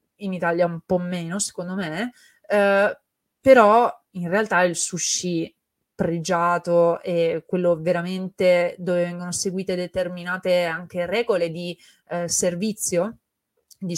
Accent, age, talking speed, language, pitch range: native, 20-39, 105 wpm, Italian, 175-200 Hz